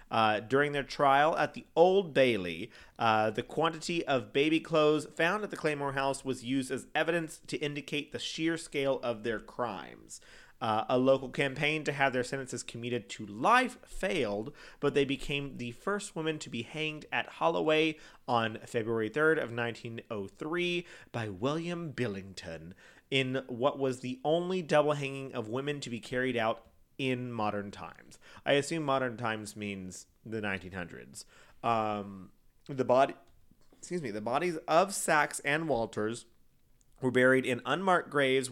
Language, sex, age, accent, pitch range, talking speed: English, male, 30-49, American, 115-145 Hz, 155 wpm